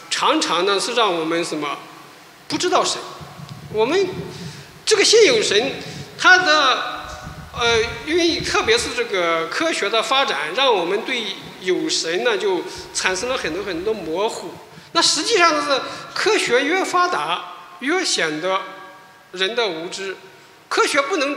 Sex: male